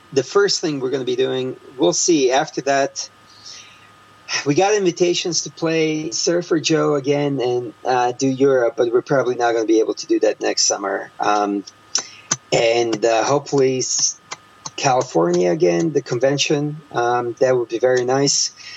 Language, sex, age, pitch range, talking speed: English, male, 40-59, 115-175 Hz, 165 wpm